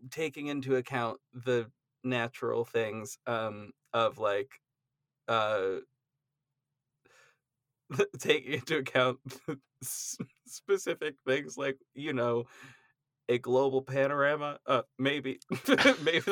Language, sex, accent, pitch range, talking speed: English, male, American, 120-145 Hz, 90 wpm